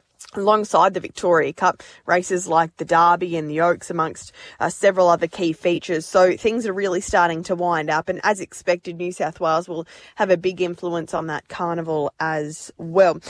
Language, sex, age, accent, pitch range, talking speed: English, female, 20-39, Australian, 170-190 Hz, 185 wpm